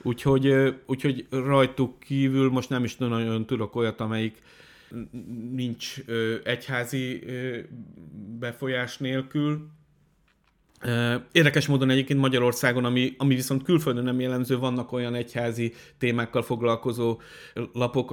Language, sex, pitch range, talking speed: Hungarian, male, 115-130 Hz, 105 wpm